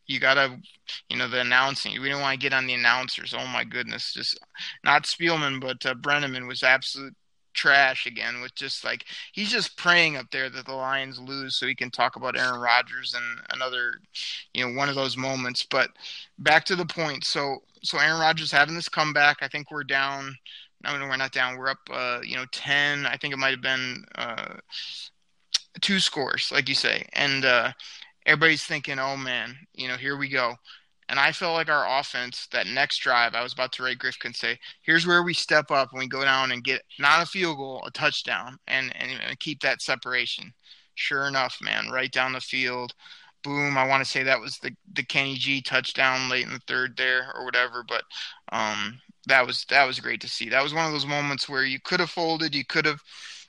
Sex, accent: male, American